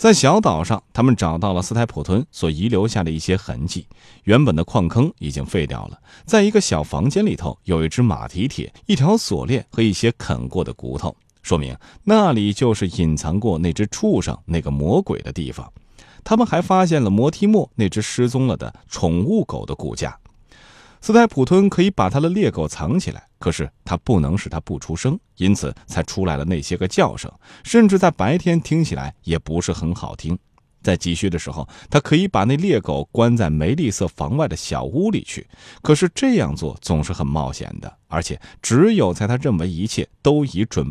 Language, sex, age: Chinese, male, 30-49